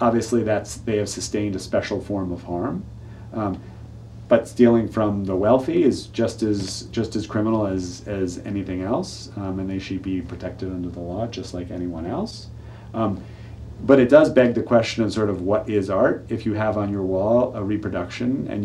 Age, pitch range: 40-59, 95-110 Hz